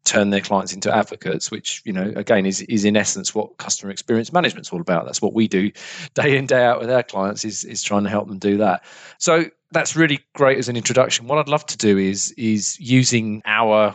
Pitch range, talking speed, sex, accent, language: 100-125 Hz, 230 wpm, male, British, English